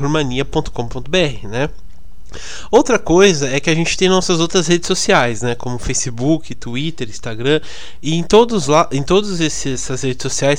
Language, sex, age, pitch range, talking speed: Portuguese, male, 20-39, 130-170 Hz, 160 wpm